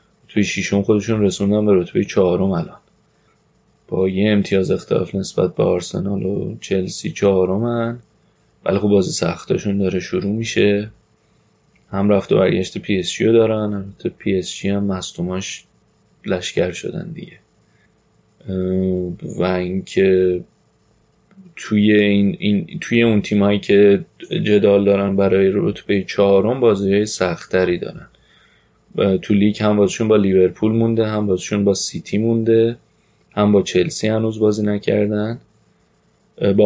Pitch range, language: 95-110 Hz, Persian